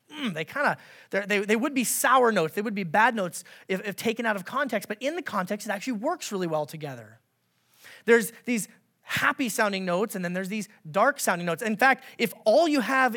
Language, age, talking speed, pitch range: English, 30-49, 225 wpm, 195-280 Hz